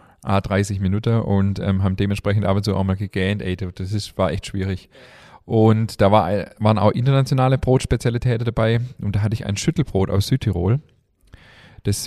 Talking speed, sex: 160 wpm, male